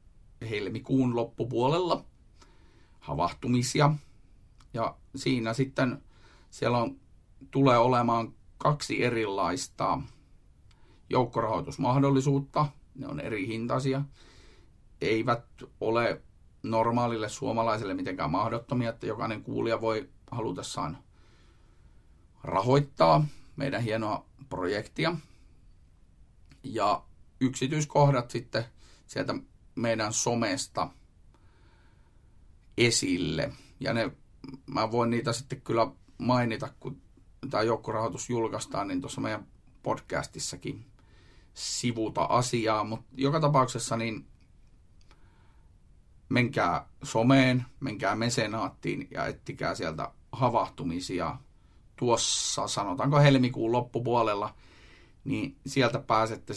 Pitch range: 105-130 Hz